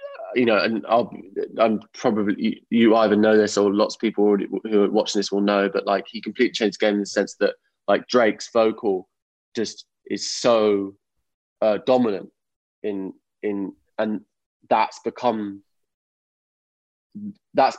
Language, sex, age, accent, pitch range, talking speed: English, male, 20-39, British, 100-120 Hz, 150 wpm